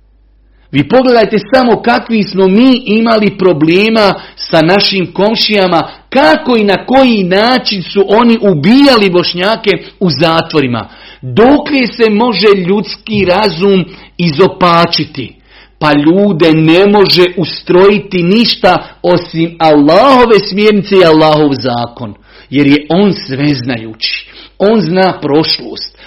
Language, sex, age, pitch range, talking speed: Croatian, male, 50-69, 150-205 Hz, 110 wpm